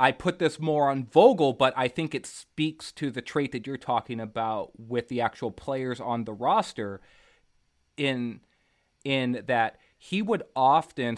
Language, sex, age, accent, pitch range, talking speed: English, male, 30-49, American, 125-150 Hz, 165 wpm